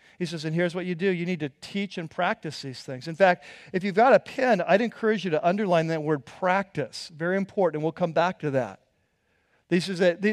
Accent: American